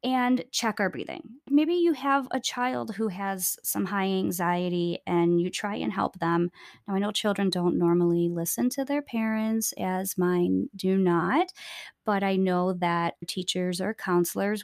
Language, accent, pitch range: English, American, 185-250 Hz